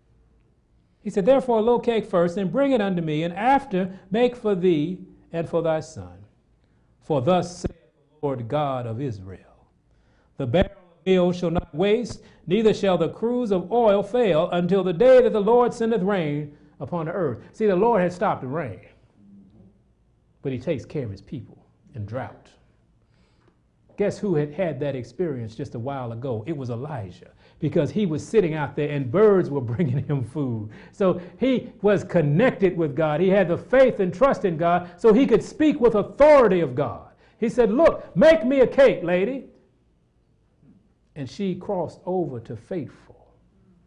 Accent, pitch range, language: American, 135-205 Hz, English